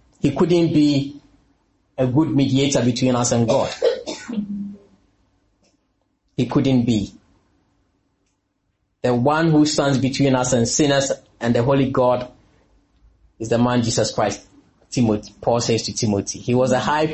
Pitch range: 120-170 Hz